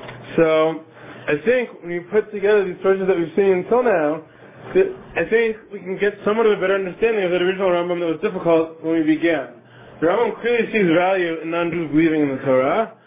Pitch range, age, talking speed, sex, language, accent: 165-200 Hz, 20-39, 215 wpm, male, English, American